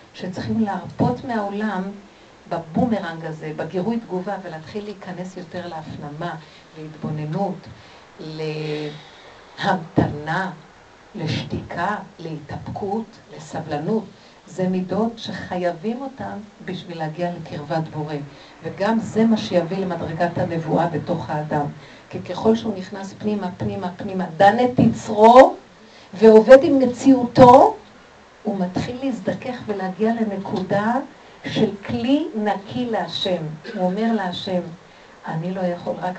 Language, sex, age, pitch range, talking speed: Hebrew, female, 50-69, 175-230 Hz, 100 wpm